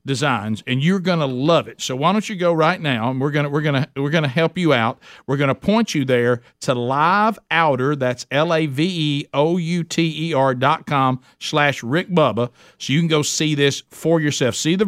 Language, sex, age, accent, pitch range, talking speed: English, male, 50-69, American, 130-165 Hz, 205 wpm